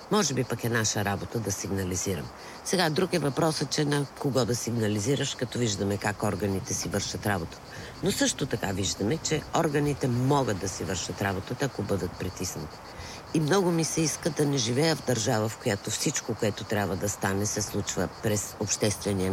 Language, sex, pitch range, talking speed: Bulgarian, female, 100-130 Hz, 185 wpm